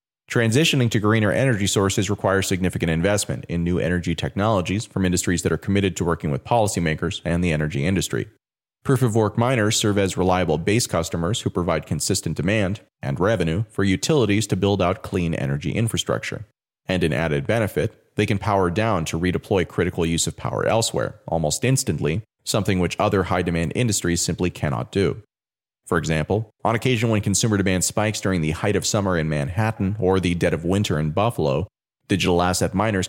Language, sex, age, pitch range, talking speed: English, male, 30-49, 85-110 Hz, 175 wpm